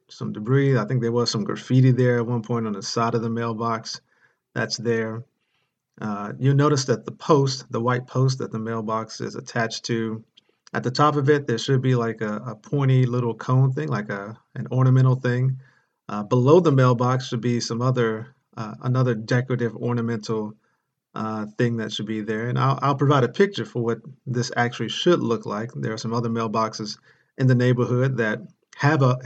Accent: American